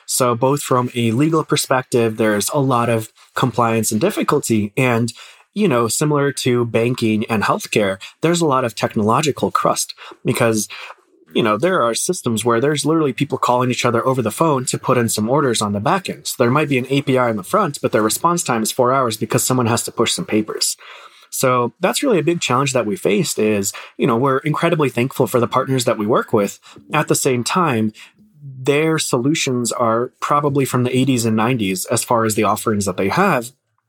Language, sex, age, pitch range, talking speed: English, male, 20-39, 115-145 Hz, 210 wpm